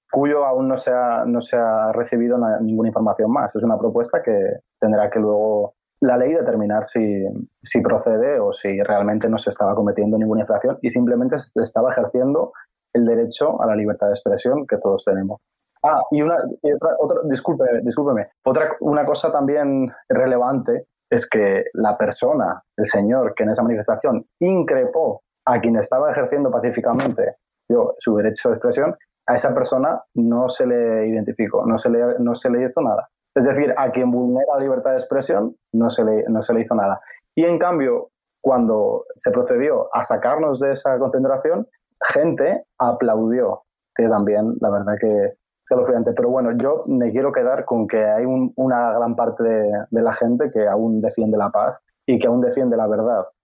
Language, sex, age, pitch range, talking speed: Spanish, male, 20-39, 110-160 Hz, 180 wpm